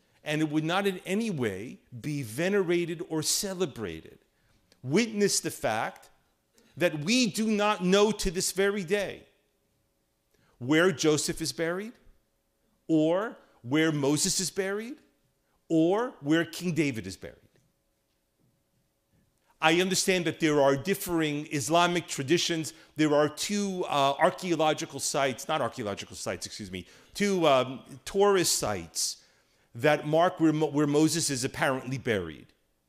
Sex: male